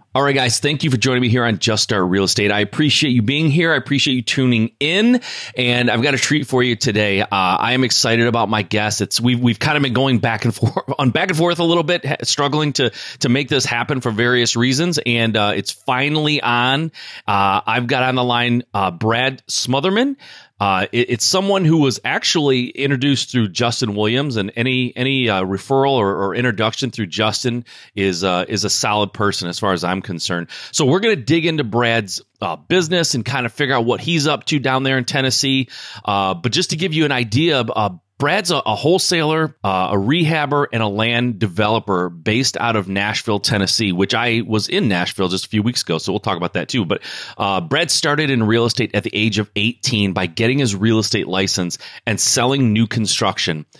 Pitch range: 105-135 Hz